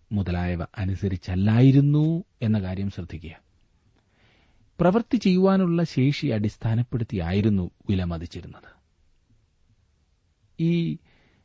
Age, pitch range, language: 40-59, 95-135 Hz, Malayalam